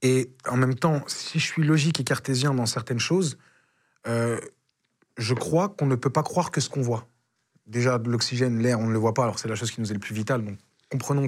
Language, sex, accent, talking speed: French, male, French, 240 wpm